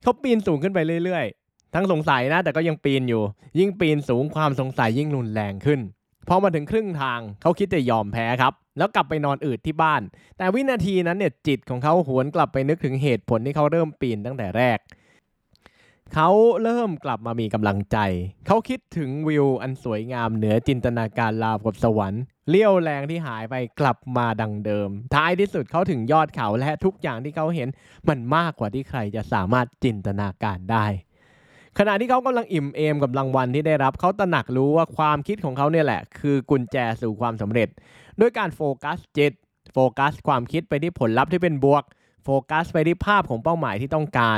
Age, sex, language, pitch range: 20-39, male, Thai, 120-165 Hz